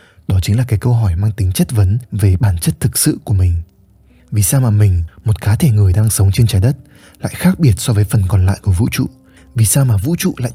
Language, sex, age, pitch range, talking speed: Vietnamese, male, 20-39, 100-120 Hz, 265 wpm